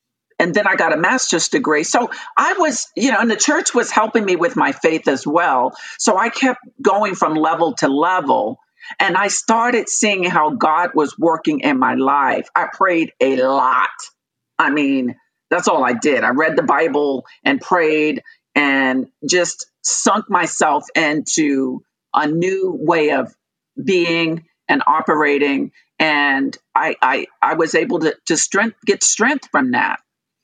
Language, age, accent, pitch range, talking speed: English, 50-69, American, 160-255 Hz, 165 wpm